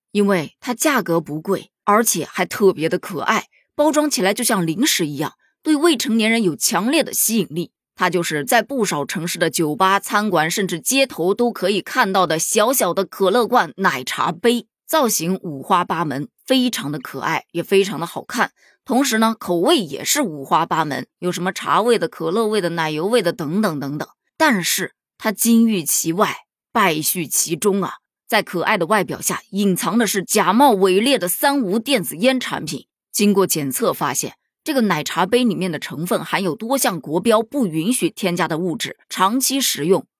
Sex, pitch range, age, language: female, 170-240 Hz, 20-39, Chinese